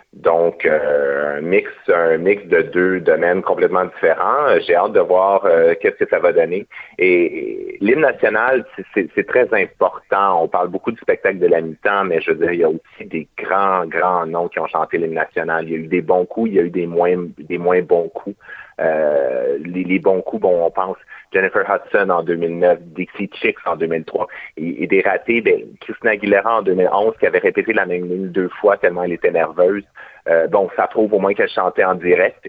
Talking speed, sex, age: 215 wpm, male, 30-49